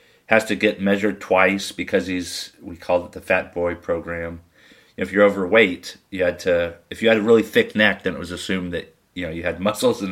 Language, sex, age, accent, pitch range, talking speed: English, male, 30-49, American, 85-105 Hz, 225 wpm